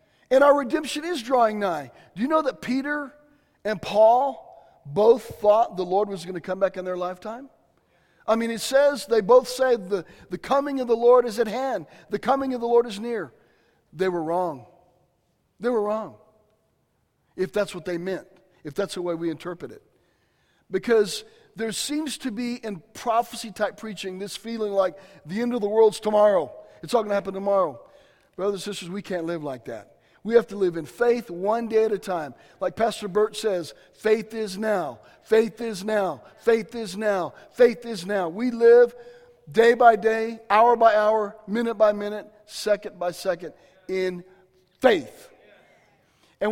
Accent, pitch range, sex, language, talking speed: American, 200-260 Hz, male, English, 185 wpm